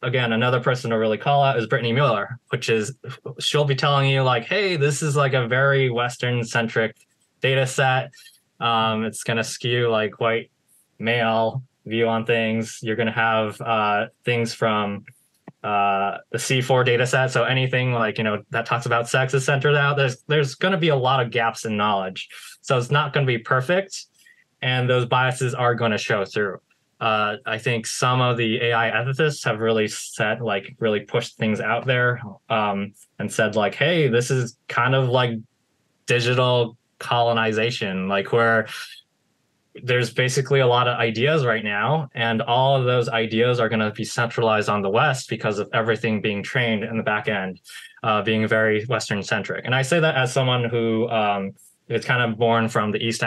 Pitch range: 110-130 Hz